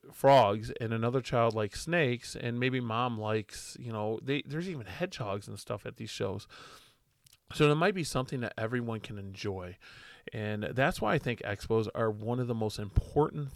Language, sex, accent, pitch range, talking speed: English, male, American, 110-130 Hz, 185 wpm